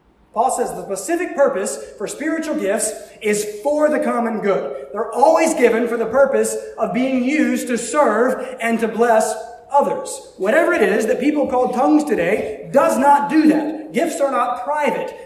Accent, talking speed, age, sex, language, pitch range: American, 175 wpm, 30-49, male, English, 220-295 Hz